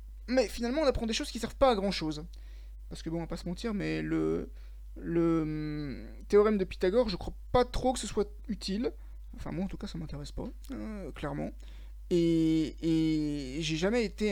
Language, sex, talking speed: French, male, 200 wpm